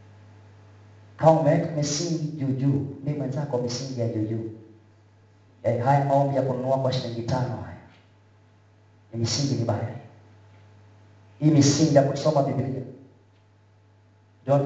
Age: 40-59